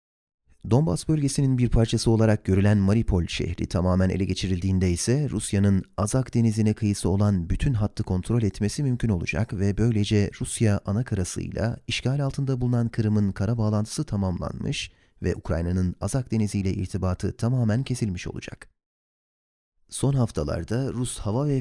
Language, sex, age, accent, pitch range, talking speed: Turkish, male, 30-49, native, 95-120 Hz, 135 wpm